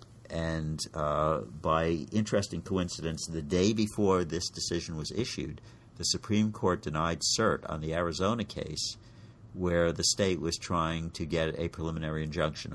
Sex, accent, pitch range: male, American, 80-105 Hz